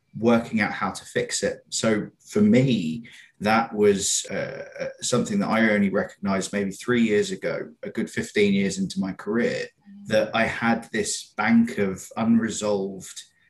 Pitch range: 100-135 Hz